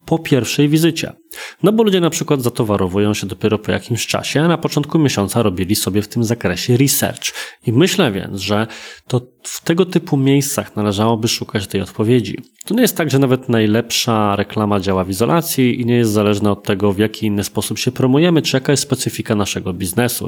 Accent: native